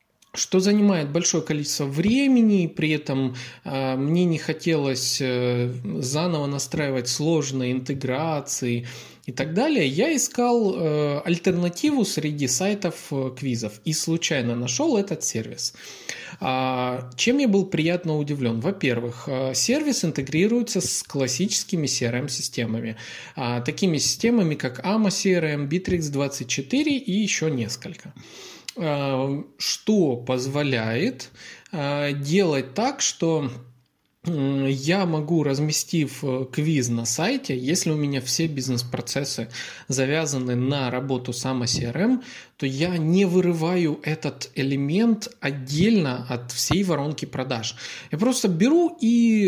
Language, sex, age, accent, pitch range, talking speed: Russian, male, 20-39, native, 130-185 Hz, 100 wpm